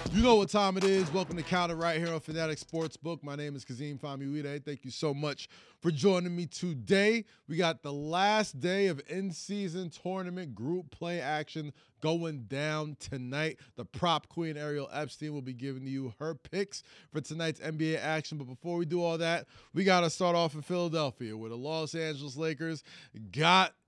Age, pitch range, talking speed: 20-39, 140-175 Hz, 190 wpm